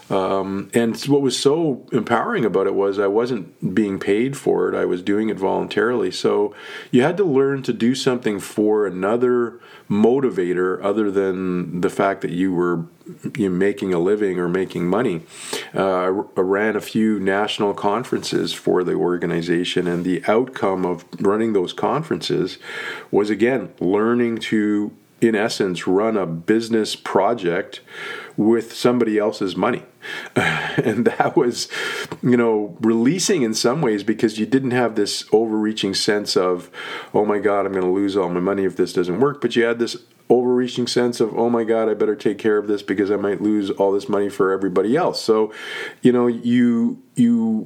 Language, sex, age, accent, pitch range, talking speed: English, male, 40-59, American, 95-120 Hz, 170 wpm